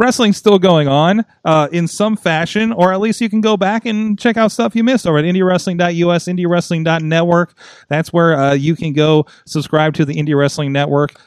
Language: English